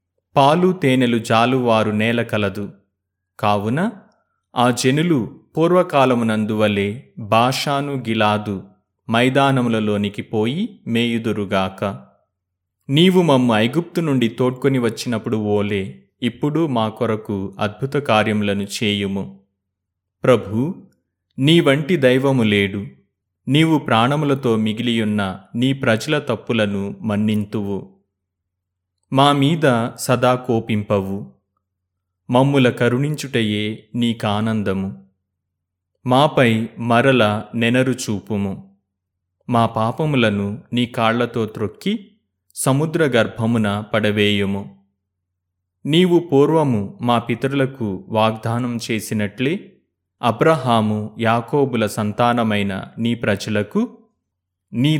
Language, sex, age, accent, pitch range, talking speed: Telugu, male, 30-49, native, 100-130 Hz, 70 wpm